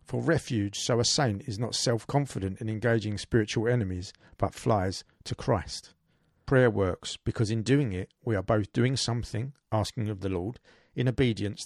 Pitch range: 100-130 Hz